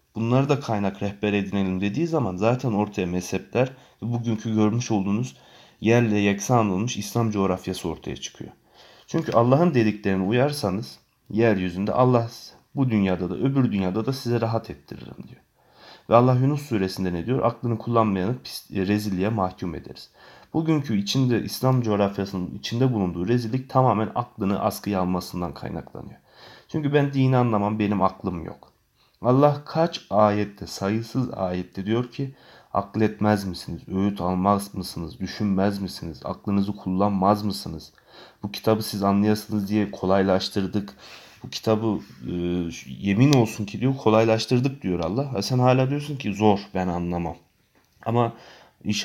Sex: male